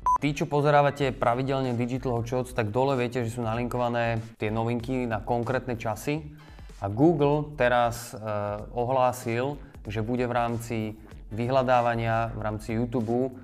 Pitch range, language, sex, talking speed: 105-120 Hz, Slovak, male, 135 wpm